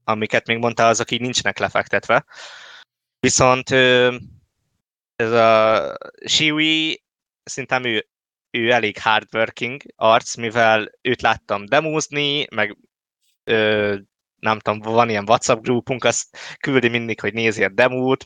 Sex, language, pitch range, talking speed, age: male, Hungarian, 110-130 Hz, 115 wpm, 20-39